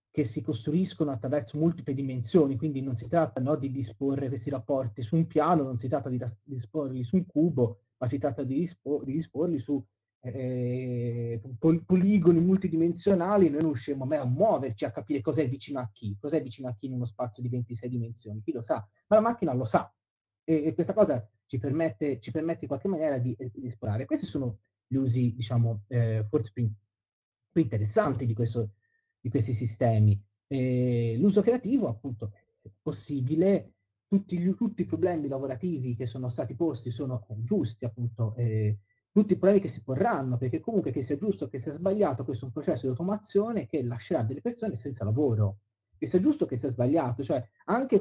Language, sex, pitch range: Italian, male, 120-160 Hz